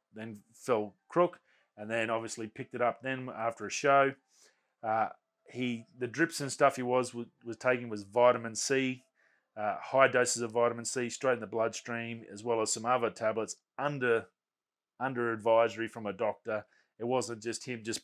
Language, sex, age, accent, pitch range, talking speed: English, male, 30-49, Australian, 105-125 Hz, 180 wpm